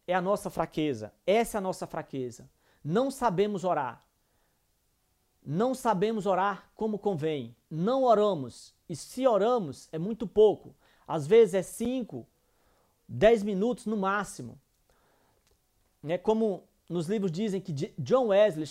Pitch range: 160-210 Hz